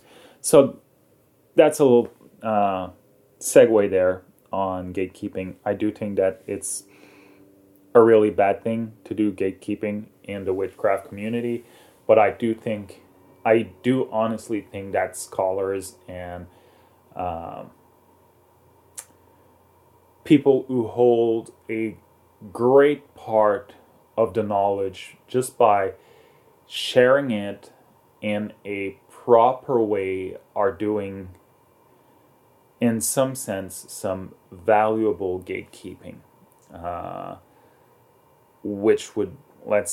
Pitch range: 95-120 Hz